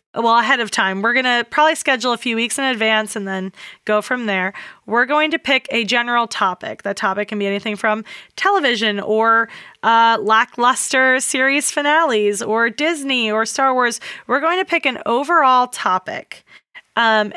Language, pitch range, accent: English, 220-270 Hz, American